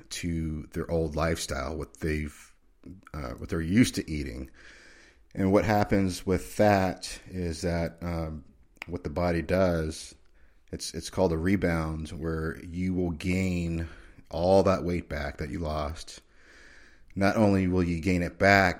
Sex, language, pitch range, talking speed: male, English, 75-90 Hz, 150 wpm